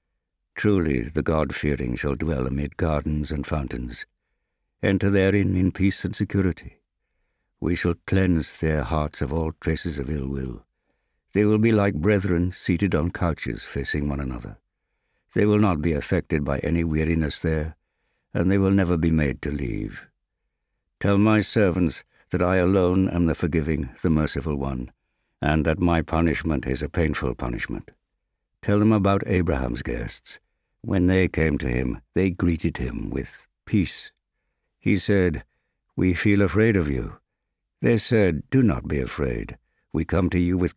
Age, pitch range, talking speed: 60-79, 75-95 Hz, 155 wpm